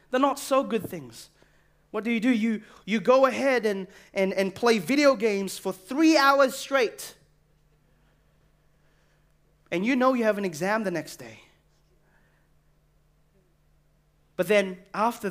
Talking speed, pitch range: 140 wpm, 190-260 Hz